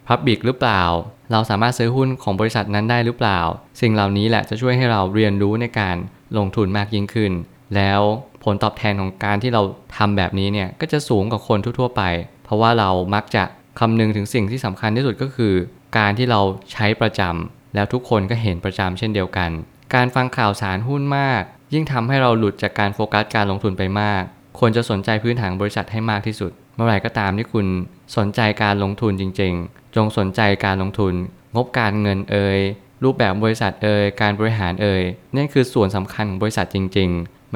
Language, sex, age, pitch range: Thai, male, 20-39, 100-120 Hz